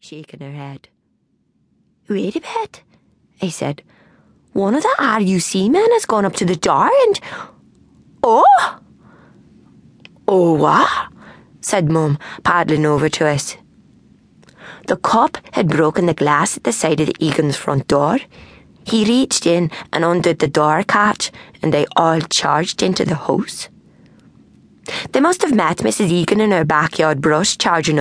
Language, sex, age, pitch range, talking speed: English, female, 20-39, 155-210 Hz, 150 wpm